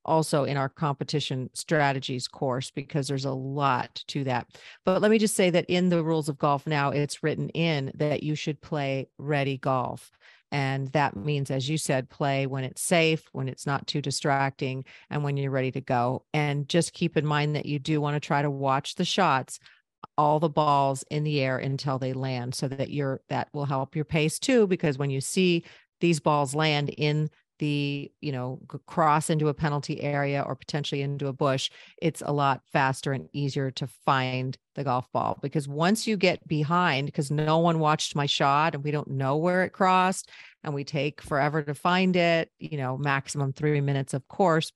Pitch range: 135-160 Hz